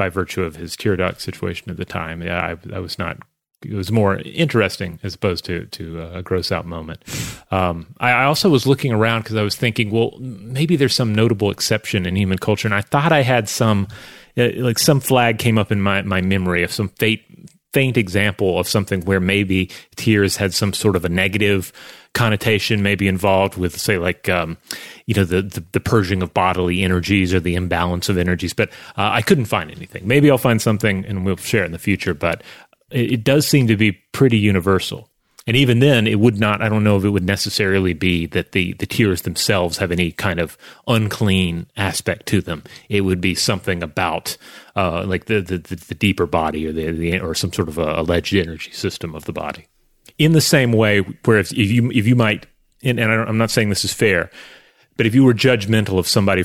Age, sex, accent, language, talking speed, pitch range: 30-49, male, American, English, 215 wpm, 90-115 Hz